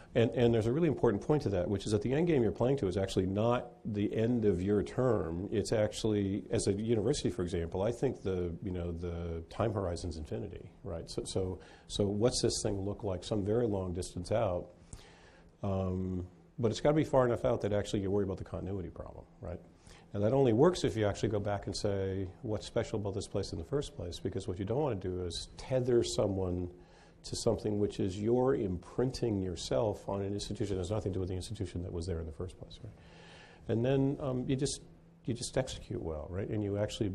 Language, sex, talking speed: English, male, 230 wpm